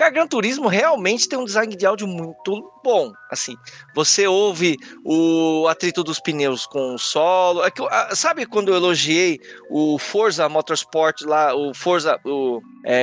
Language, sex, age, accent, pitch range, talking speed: Portuguese, male, 20-39, Brazilian, 160-210 Hz, 165 wpm